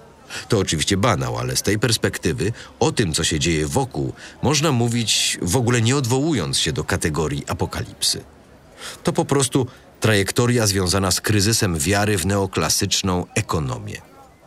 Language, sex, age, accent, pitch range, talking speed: Polish, male, 40-59, native, 90-120 Hz, 140 wpm